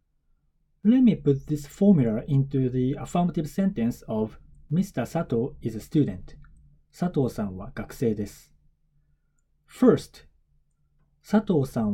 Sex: male